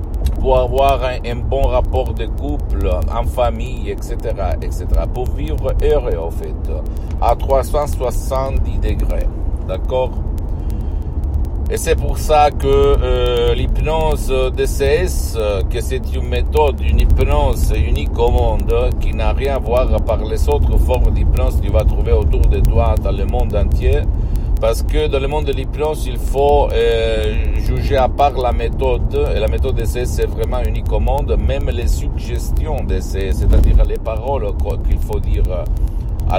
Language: Italian